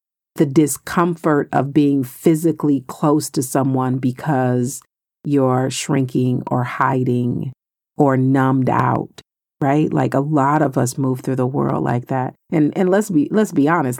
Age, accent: 40-59, American